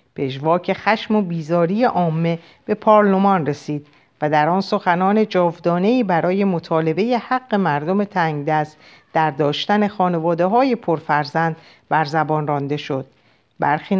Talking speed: 120 wpm